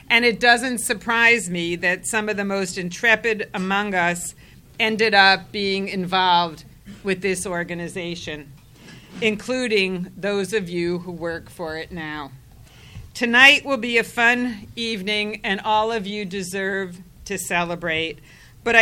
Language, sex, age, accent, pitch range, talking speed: English, female, 50-69, American, 175-215 Hz, 135 wpm